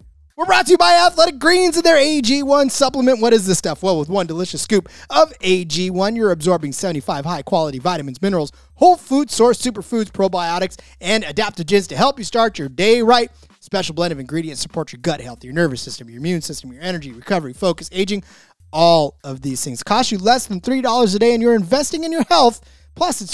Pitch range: 165-230 Hz